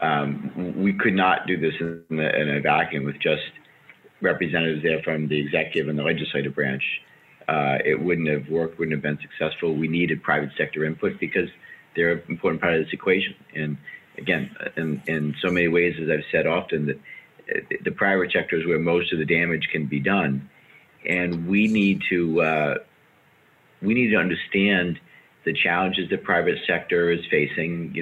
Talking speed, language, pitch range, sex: 180 wpm, English, 75-85 Hz, male